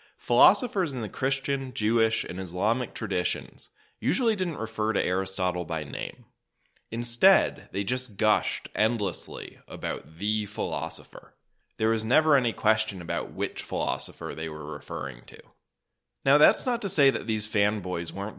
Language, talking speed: English, 145 wpm